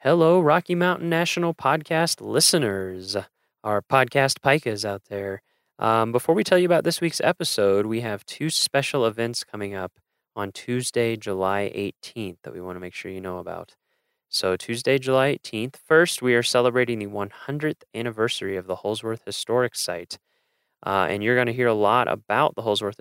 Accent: American